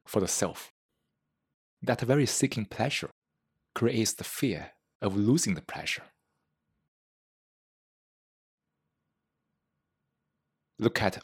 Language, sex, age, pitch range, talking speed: English, male, 30-49, 75-115 Hz, 85 wpm